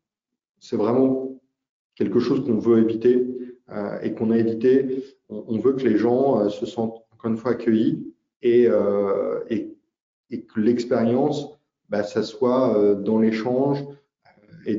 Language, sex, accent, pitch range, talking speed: French, male, French, 105-125 Hz, 140 wpm